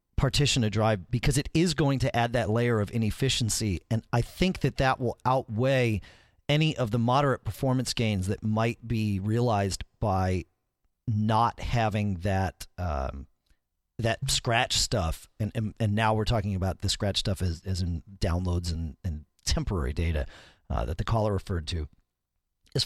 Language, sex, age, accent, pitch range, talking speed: English, male, 40-59, American, 95-130 Hz, 165 wpm